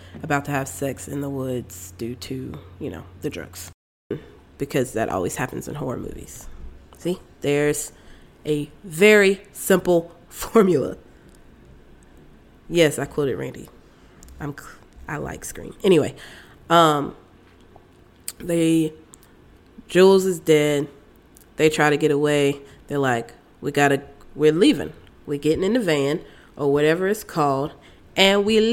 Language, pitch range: English, 130-160 Hz